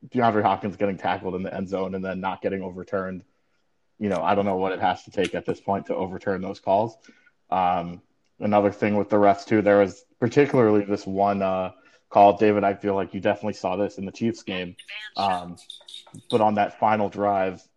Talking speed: 210 wpm